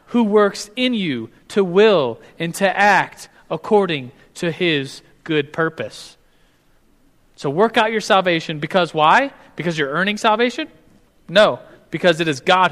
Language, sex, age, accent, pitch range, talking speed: English, male, 30-49, American, 145-190 Hz, 140 wpm